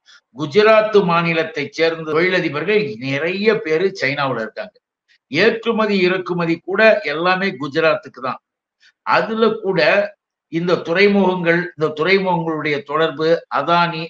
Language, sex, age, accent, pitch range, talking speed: Tamil, male, 60-79, native, 155-200 Hz, 95 wpm